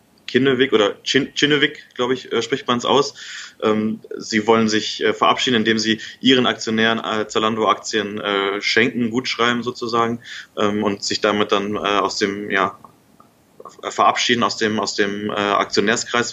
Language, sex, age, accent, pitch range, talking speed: German, male, 20-39, German, 105-120 Hz, 135 wpm